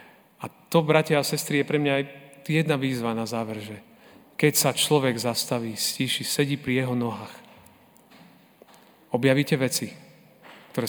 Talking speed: 140 wpm